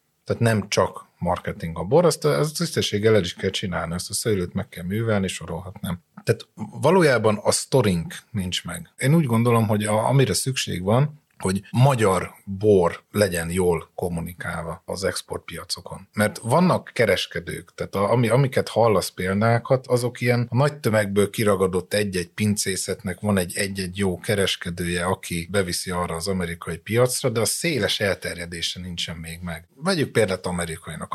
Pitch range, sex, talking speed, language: 90-110 Hz, male, 150 wpm, Hungarian